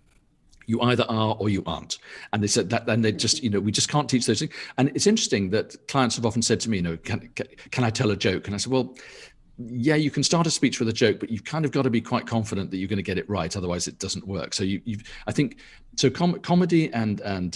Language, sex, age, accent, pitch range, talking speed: English, male, 50-69, British, 95-130 Hz, 285 wpm